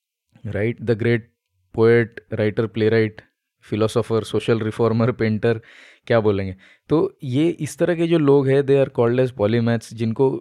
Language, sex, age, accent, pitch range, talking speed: Hindi, male, 20-39, native, 115-140 Hz, 150 wpm